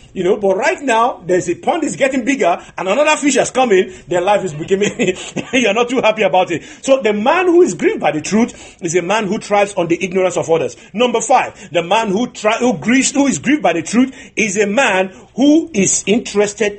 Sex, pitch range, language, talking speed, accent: male, 185-270 Hz, English, 235 wpm, Nigerian